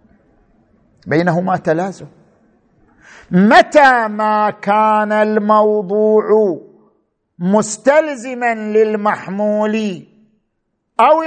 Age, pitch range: 50-69, 190-265 Hz